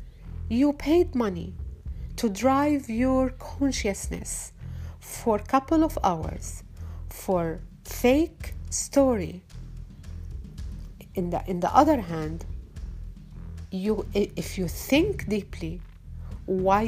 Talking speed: 95 wpm